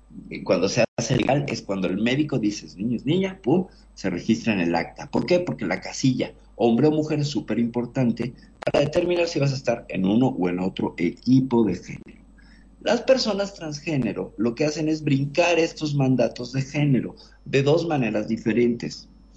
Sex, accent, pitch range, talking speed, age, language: male, Mexican, 110-155 Hz, 180 wpm, 50-69, Spanish